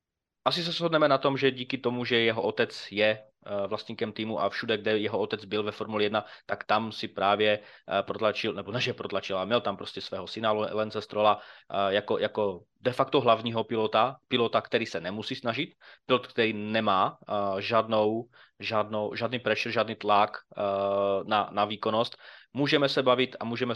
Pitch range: 100-115 Hz